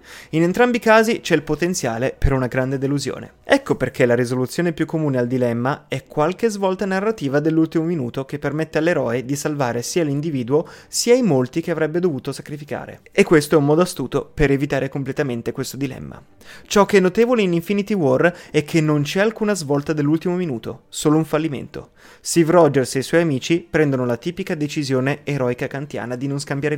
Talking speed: 185 wpm